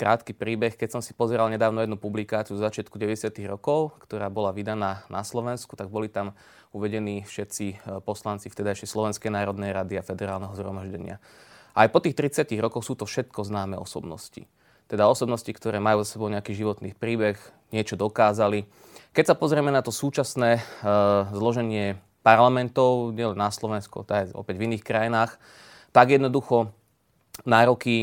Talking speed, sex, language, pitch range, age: 155 wpm, male, Slovak, 105-120 Hz, 20-39